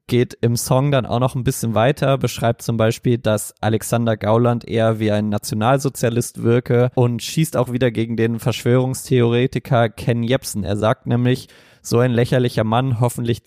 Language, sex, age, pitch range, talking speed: German, male, 20-39, 110-130 Hz, 165 wpm